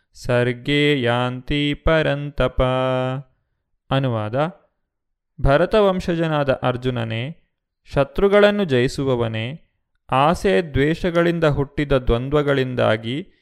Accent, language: native, Kannada